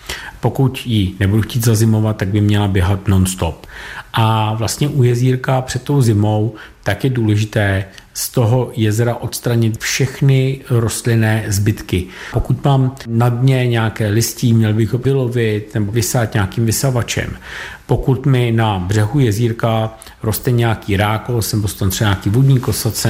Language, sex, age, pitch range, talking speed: Czech, male, 50-69, 105-125 Hz, 145 wpm